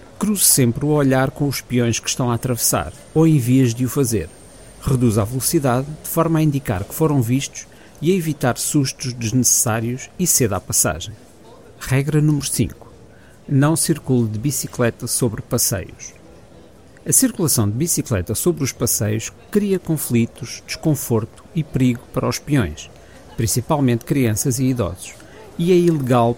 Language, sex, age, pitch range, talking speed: Portuguese, male, 50-69, 115-145 Hz, 150 wpm